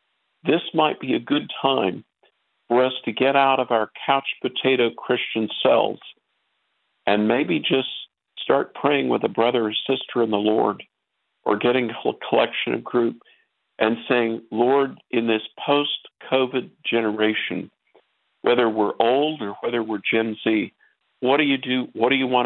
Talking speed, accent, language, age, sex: 160 wpm, American, English, 50-69, male